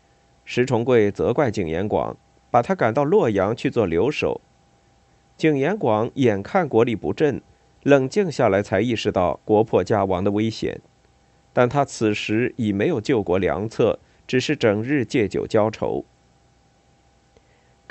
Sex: male